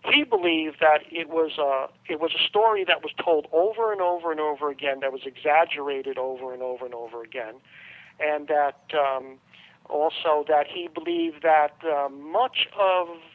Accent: American